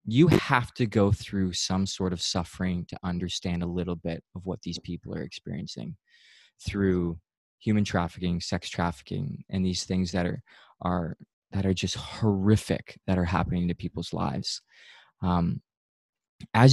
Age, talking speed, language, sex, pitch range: 20-39, 155 wpm, English, male, 90-105 Hz